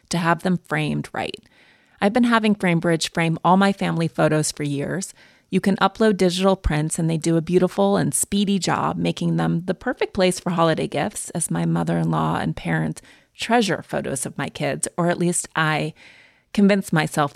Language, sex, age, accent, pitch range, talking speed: English, female, 30-49, American, 160-205 Hz, 185 wpm